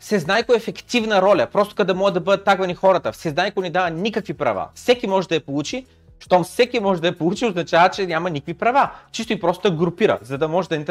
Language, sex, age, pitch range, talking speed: Bulgarian, male, 30-49, 150-195 Hz, 225 wpm